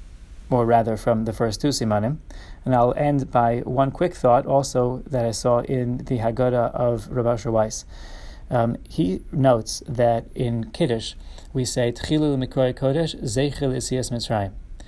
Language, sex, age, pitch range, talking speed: English, male, 30-49, 115-135 Hz, 145 wpm